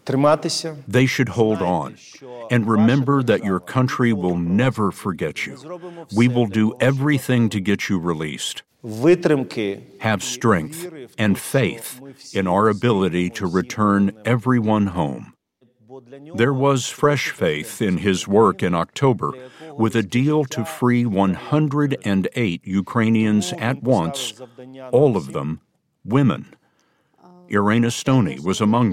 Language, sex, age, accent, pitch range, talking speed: English, male, 60-79, American, 100-140 Hz, 120 wpm